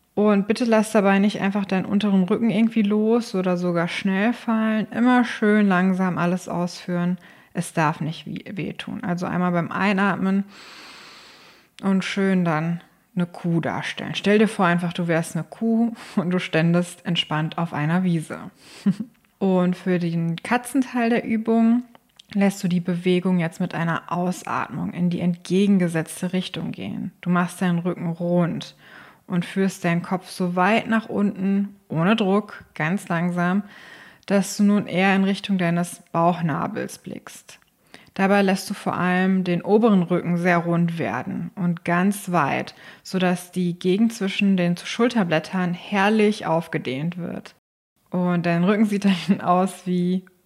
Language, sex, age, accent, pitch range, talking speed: German, female, 20-39, German, 175-205 Hz, 145 wpm